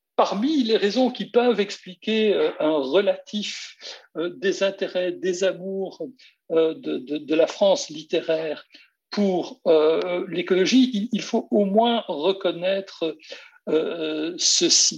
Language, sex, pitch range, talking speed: French, male, 175-255 Hz, 115 wpm